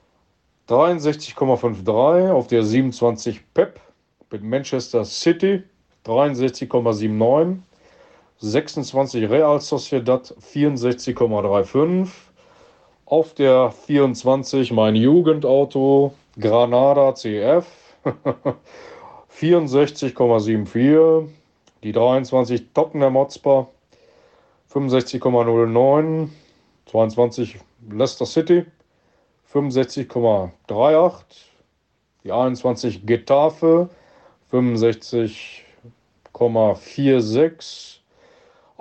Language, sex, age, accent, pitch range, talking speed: German, male, 40-59, German, 120-155 Hz, 55 wpm